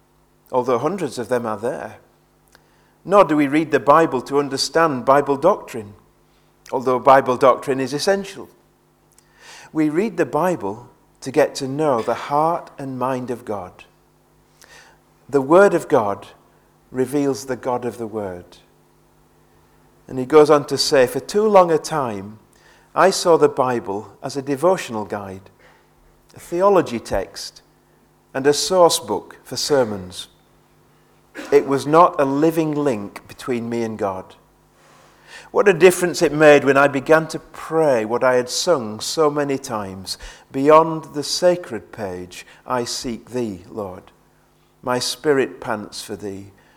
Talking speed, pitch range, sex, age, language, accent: 145 wpm, 100-150 Hz, male, 40-59, English, British